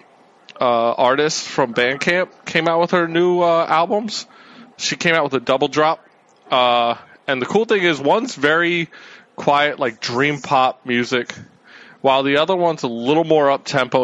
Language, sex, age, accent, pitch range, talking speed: English, male, 20-39, American, 120-160 Hz, 165 wpm